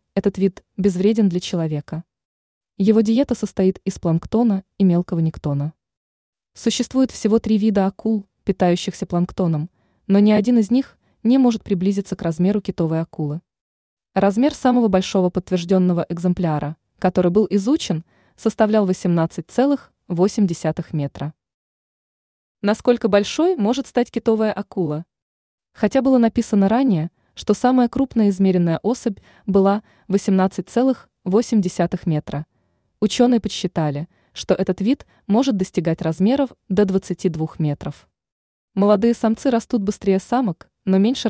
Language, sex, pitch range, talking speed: Russian, female, 170-225 Hz, 115 wpm